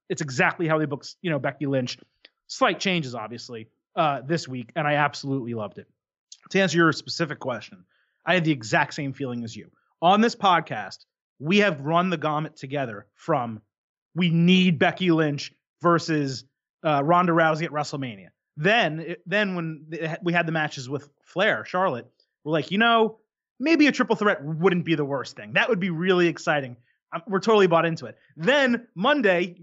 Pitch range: 145-190 Hz